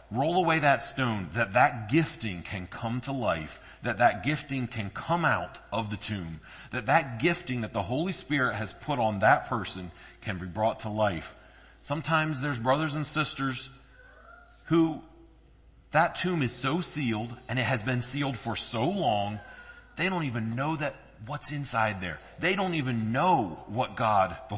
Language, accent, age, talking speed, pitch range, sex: English, American, 40-59, 175 wpm, 105-135 Hz, male